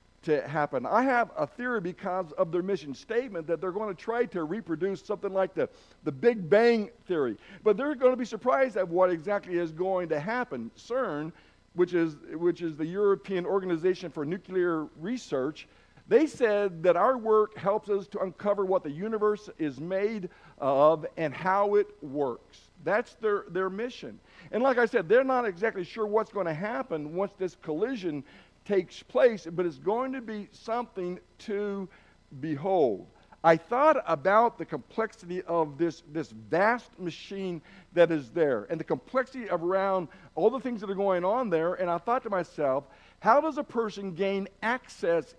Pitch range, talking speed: 165-225 Hz, 175 wpm